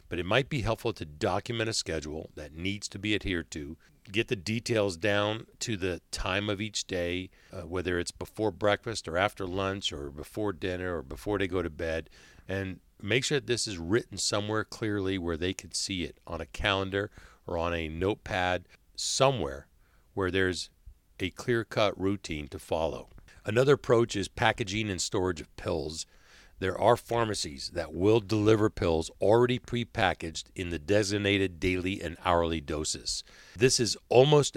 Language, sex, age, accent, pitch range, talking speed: English, male, 50-69, American, 85-105 Hz, 170 wpm